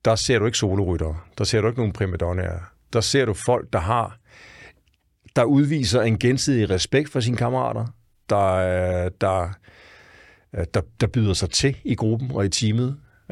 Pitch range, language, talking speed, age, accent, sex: 95-120 Hz, Danish, 170 wpm, 60-79, native, male